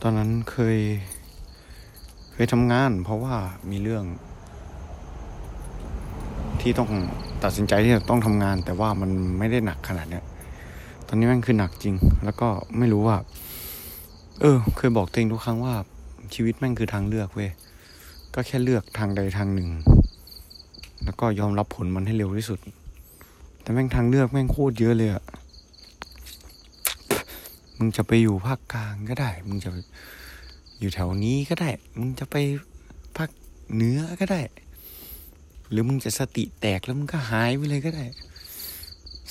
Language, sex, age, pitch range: Thai, male, 20-39, 75-115 Hz